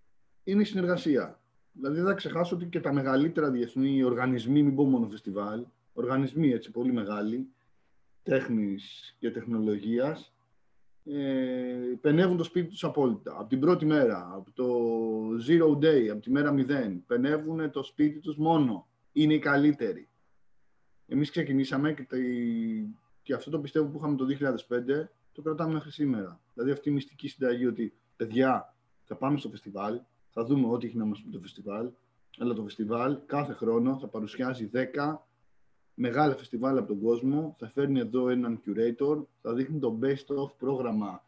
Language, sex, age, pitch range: Greek, male, 30-49, 115-145 Hz